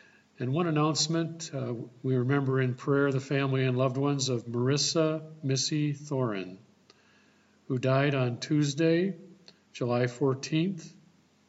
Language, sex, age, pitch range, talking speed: English, male, 50-69, 125-150 Hz, 120 wpm